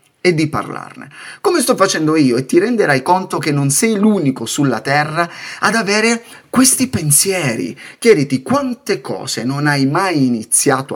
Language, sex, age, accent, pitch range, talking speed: Italian, male, 30-49, native, 140-205 Hz, 155 wpm